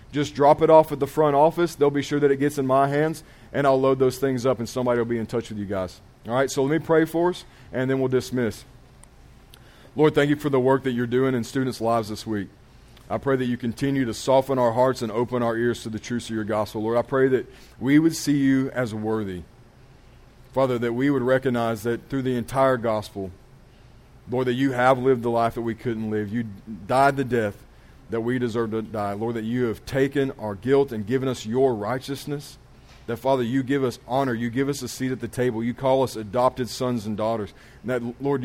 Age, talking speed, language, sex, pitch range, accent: 40-59, 240 wpm, English, male, 115-135 Hz, American